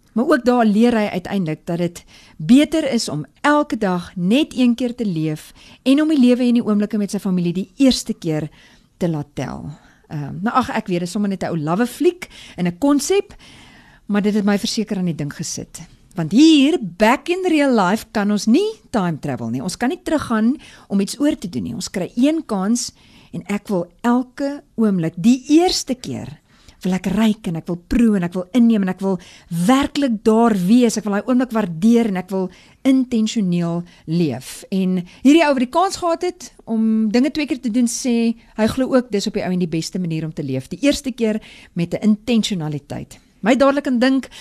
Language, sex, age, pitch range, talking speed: English, female, 50-69, 180-255 Hz, 210 wpm